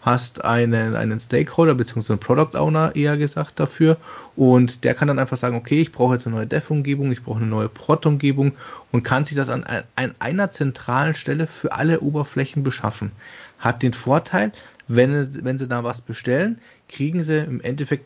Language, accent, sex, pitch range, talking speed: German, German, male, 120-145 Hz, 185 wpm